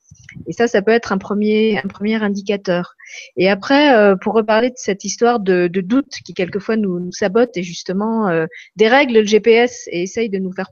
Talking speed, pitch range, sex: 200 wpm, 200-270 Hz, female